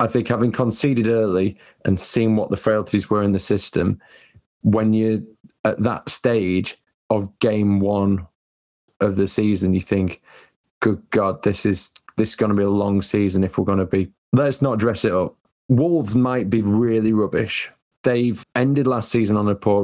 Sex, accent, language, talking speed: male, British, English, 185 wpm